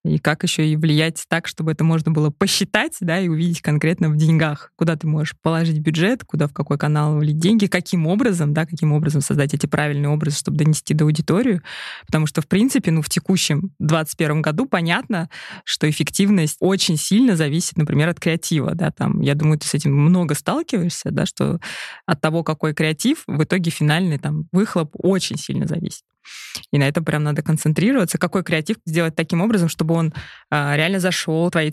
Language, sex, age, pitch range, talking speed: Russian, female, 20-39, 155-185 Hz, 185 wpm